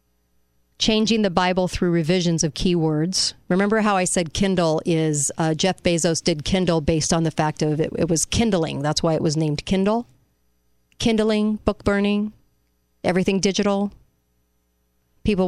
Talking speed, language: 150 wpm, English